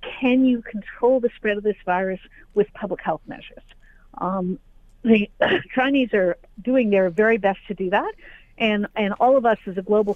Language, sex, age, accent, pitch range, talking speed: English, female, 50-69, American, 195-230 Hz, 185 wpm